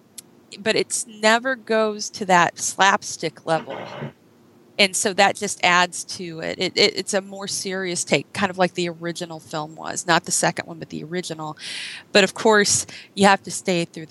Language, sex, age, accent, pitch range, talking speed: English, female, 30-49, American, 160-190 Hz, 185 wpm